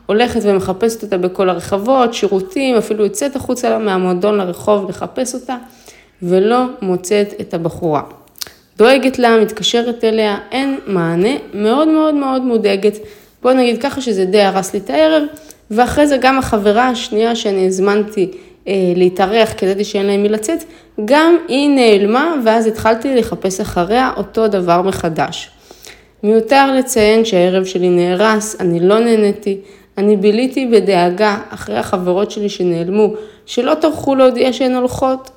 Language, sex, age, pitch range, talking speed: Hebrew, female, 20-39, 190-245 Hz, 140 wpm